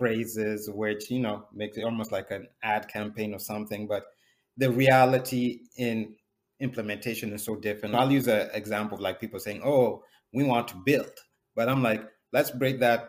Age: 30-49